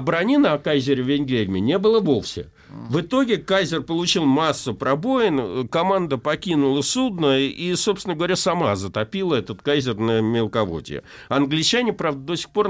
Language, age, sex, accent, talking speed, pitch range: Russian, 50-69, male, native, 145 wpm, 125-175 Hz